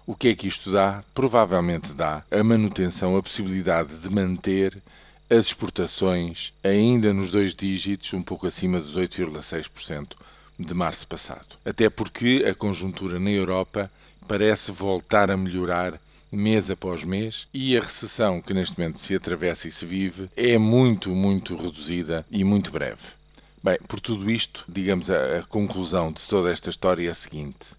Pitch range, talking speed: 85-100 Hz, 160 wpm